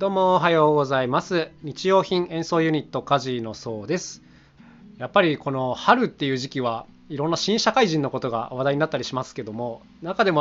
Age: 20-39